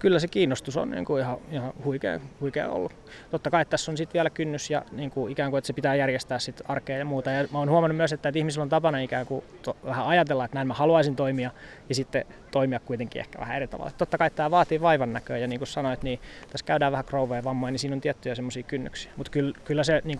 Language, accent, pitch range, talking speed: Finnish, native, 135-155 Hz, 255 wpm